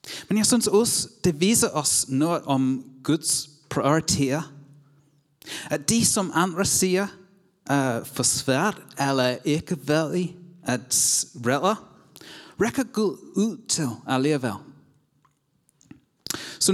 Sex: male